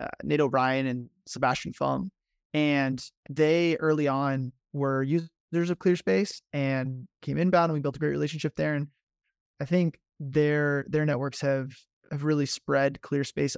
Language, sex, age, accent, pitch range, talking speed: English, male, 20-39, American, 140-170 Hz, 155 wpm